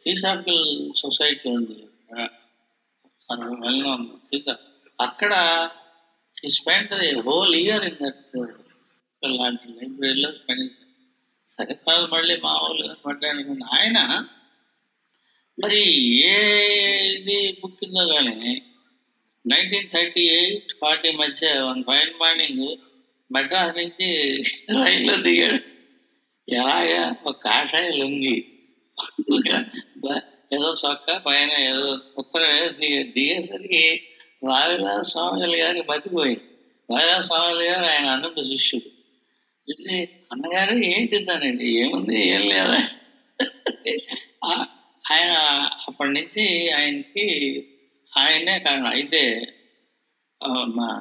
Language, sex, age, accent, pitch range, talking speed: Telugu, male, 60-79, native, 135-190 Hz, 75 wpm